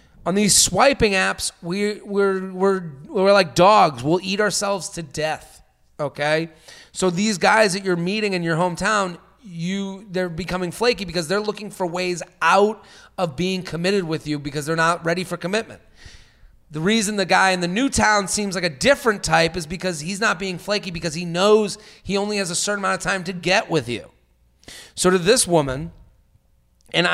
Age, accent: 30-49, American